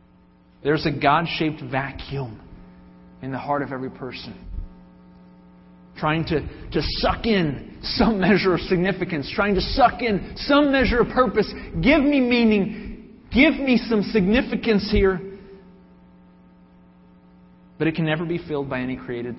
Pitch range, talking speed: 120-175 Hz, 135 wpm